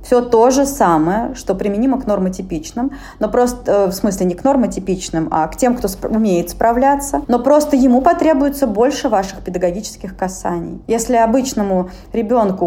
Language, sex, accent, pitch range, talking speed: Russian, female, native, 185-255 Hz, 150 wpm